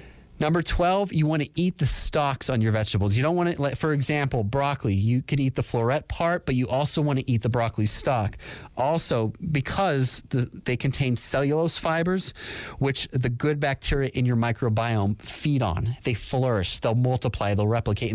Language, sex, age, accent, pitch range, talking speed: English, male, 30-49, American, 120-150 Hz, 180 wpm